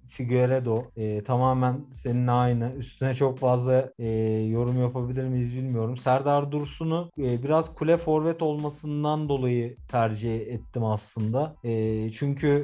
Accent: native